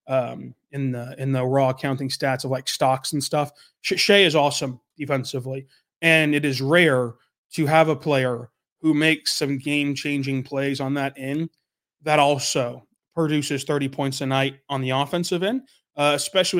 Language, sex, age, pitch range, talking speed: English, male, 20-39, 135-155 Hz, 170 wpm